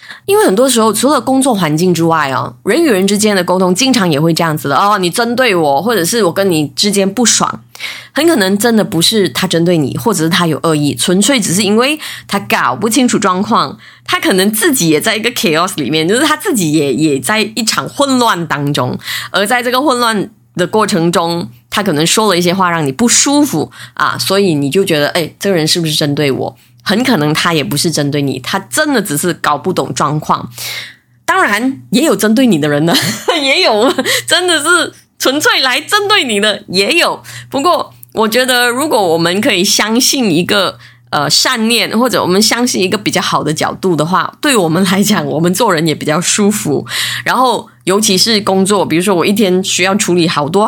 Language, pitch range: Chinese, 160-230 Hz